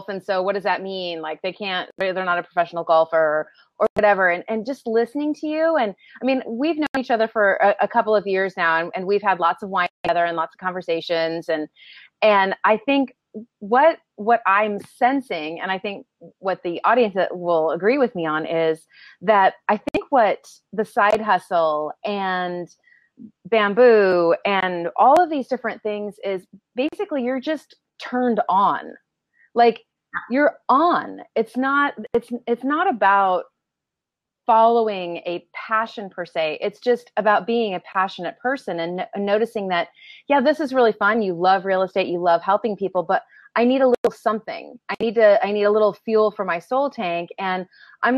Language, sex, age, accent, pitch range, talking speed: English, female, 30-49, American, 175-235 Hz, 185 wpm